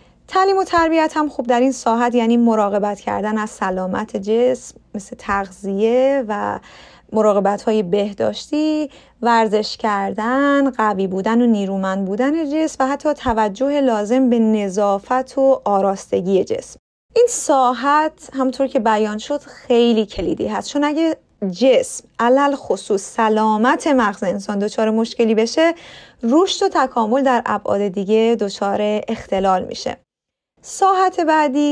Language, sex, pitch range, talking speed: Persian, female, 215-285 Hz, 130 wpm